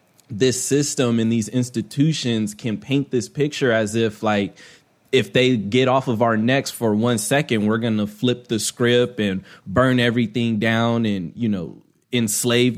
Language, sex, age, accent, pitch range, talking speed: English, male, 20-39, American, 100-120 Hz, 170 wpm